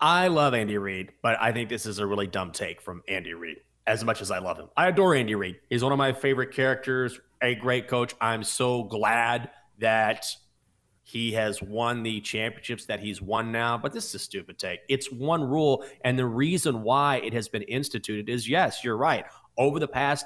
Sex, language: male, English